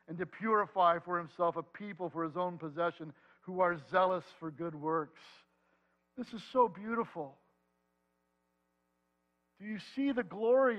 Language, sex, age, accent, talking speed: English, male, 60-79, American, 145 wpm